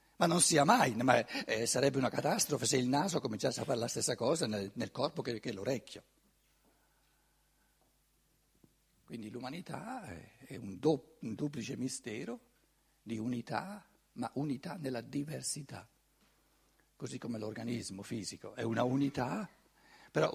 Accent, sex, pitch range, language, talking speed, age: native, male, 105-145 Hz, Italian, 135 wpm, 60-79